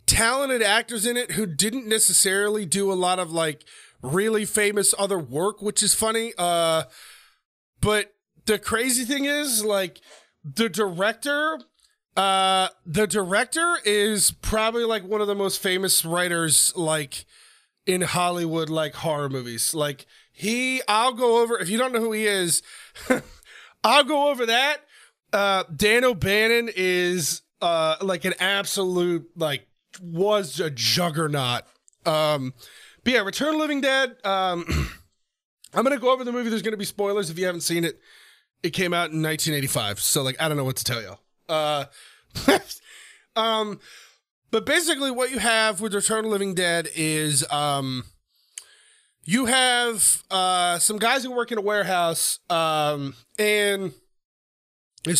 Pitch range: 165-230 Hz